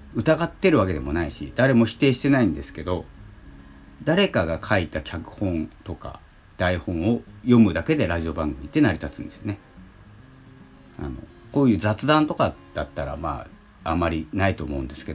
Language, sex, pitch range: Japanese, male, 80-115 Hz